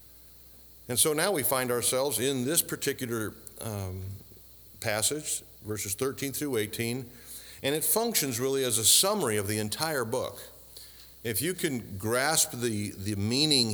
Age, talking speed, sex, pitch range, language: 50-69, 145 wpm, male, 95-130 Hz, English